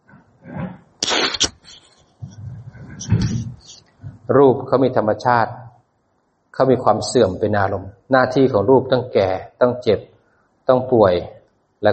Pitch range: 105-125 Hz